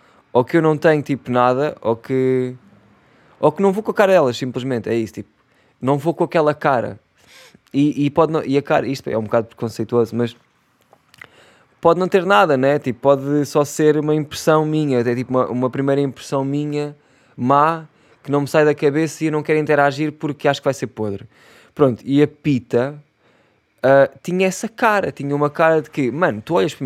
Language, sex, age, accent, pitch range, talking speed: Portuguese, male, 20-39, Portuguese, 120-155 Hz, 210 wpm